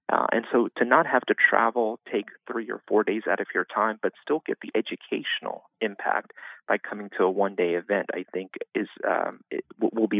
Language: English